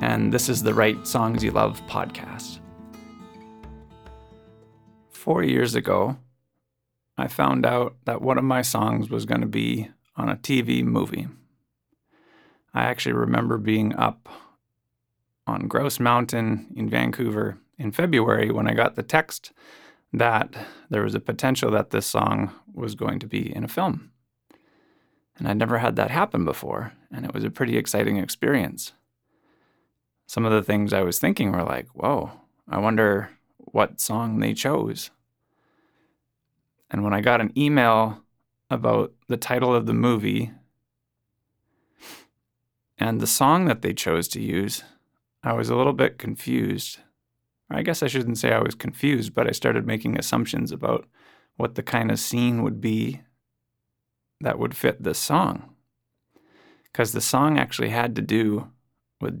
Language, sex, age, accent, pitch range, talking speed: English, male, 30-49, American, 110-125 Hz, 155 wpm